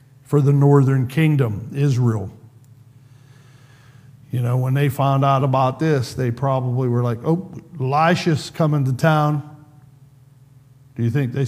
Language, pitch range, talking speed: English, 130-145 Hz, 135 wpm